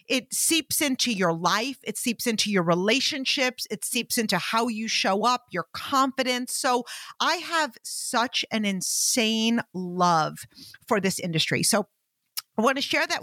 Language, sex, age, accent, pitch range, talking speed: English, female, 40-59, American, 205-290 Hz, 160 wpm